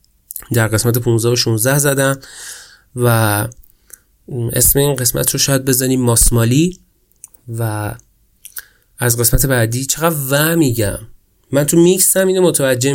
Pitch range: 115-135 Hz